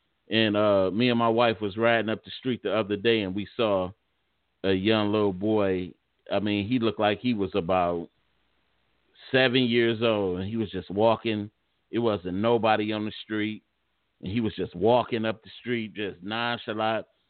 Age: 40-59